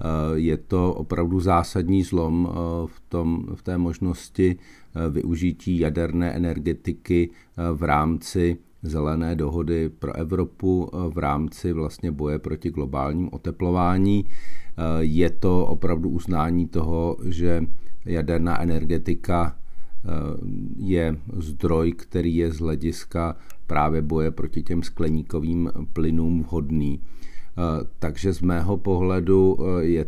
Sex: male